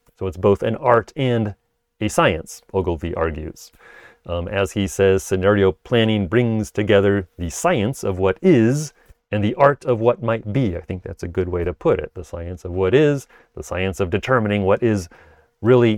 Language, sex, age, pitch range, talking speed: English, male, 30-49, 100-130 Hz, 190 wpm